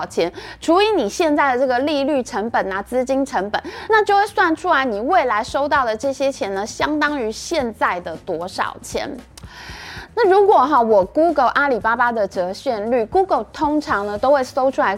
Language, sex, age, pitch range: Chinese, female, 20-39, 220-315 Hz